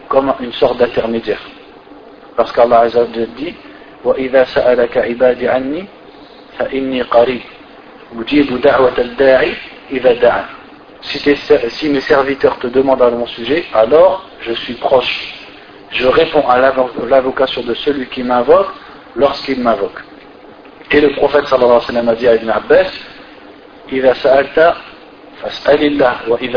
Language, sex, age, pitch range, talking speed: French, male, 50-69, 125-150 Hz, 85 wpm